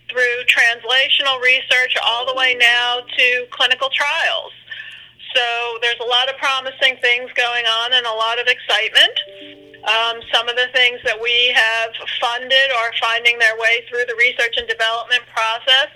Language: English